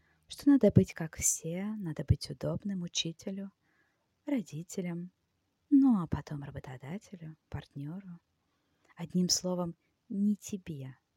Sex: female